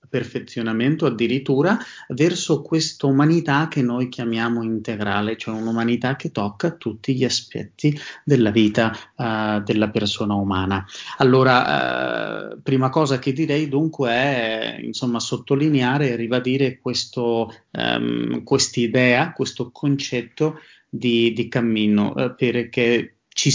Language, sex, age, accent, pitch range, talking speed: Italian, male, 30-49, native, 115-135 Hz, 110 wpm